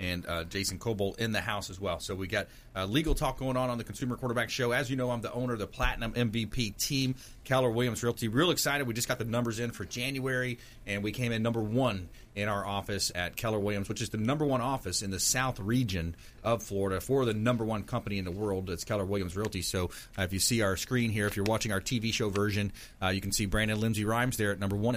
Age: 30-49